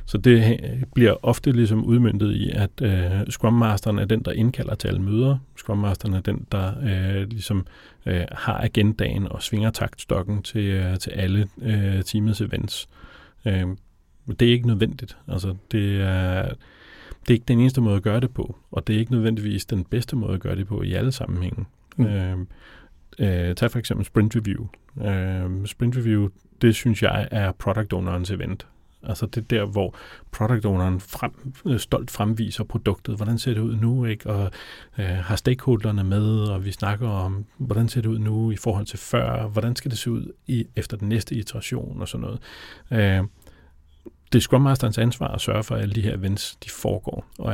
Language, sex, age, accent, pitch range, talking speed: Danish, male, 30-49, native, 100-115 Hz, 190 wpm